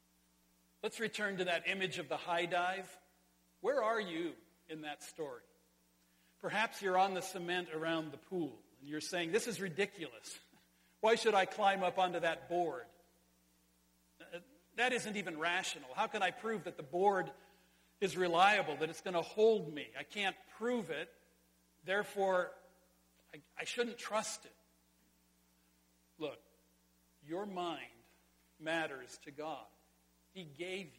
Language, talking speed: English, 145 wpm